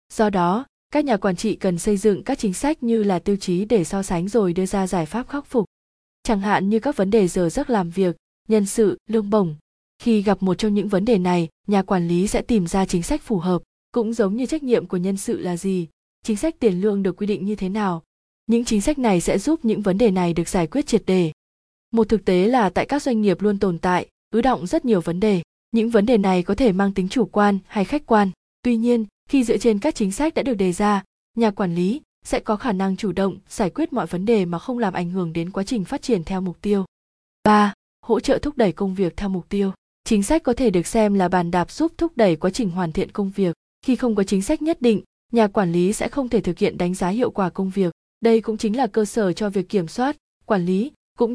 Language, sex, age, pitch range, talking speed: Vietnamese, female, 20-39, 185-230 Hz, 260 wpm